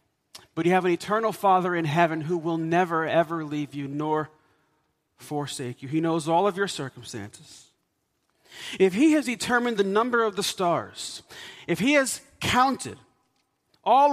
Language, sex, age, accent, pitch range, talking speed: English, male, 40-59, American, 165-210 Hz, 155 wpm